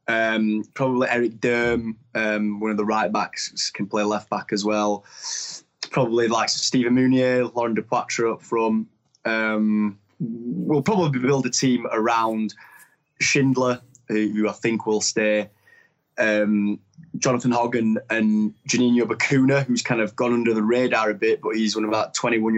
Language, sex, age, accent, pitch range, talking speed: English, male, 20-39, British, 105-120 Hz, 155 wpm